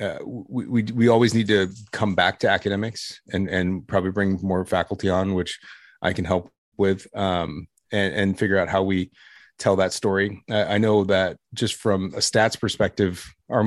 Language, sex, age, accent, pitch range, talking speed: English, male, 30-49, American, 90-105 Hz, 190 wpm